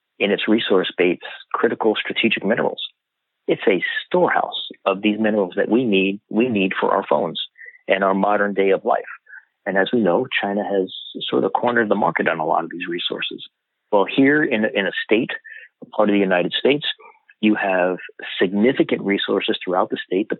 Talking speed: 185 wpm